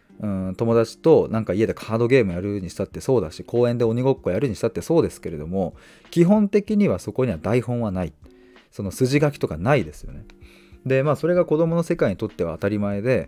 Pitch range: 95-130 Hz